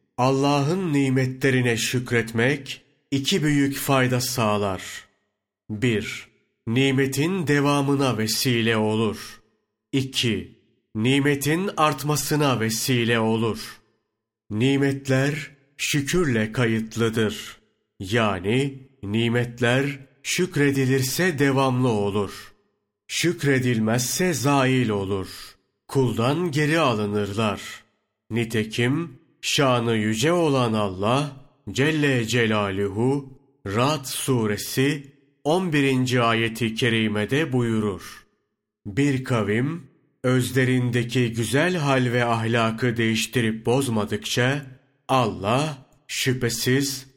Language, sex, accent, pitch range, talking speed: Turkish, male, native, 115-140 Hz, 70 wpm